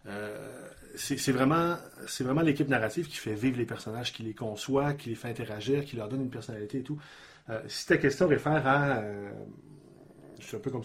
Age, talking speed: 30-49, 210 wpm